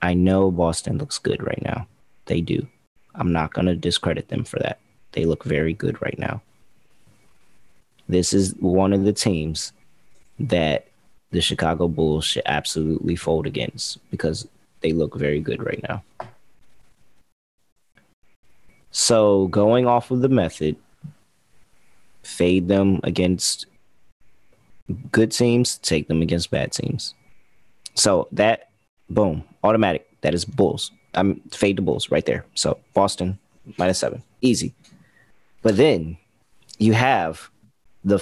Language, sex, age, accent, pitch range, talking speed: English, male, 30-49, American, 85-130 Hz, 130 wpm